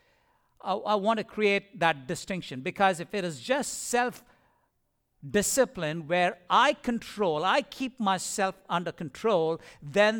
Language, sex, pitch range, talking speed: English, male, 160-255 Hz, 125 wpm